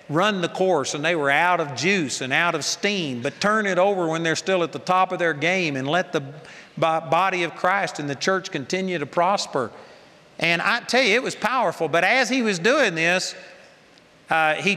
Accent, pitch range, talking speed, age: American, 145-175 Hz, 215 wpm, 50-69